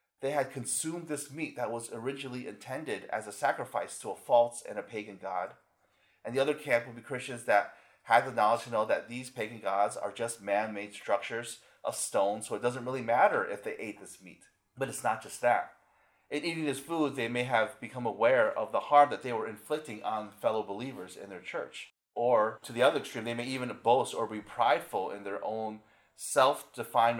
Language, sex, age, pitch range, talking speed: English, male, 30-49, 105-130 Hz, 210 wpm